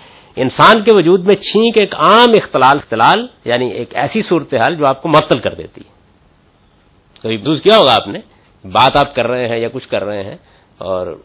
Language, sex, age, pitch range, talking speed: Urdu, male, 50-69, 110-185 Hz, 205 wpm